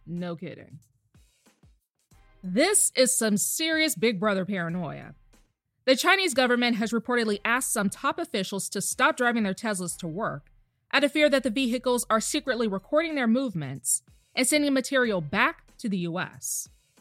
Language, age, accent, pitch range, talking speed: English, 20-39, American, 170-265 Hz, 150 wpm